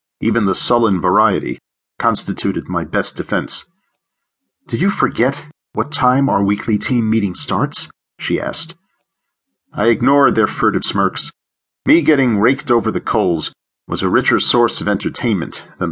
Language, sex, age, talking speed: English, male, 40-59, 145 wpm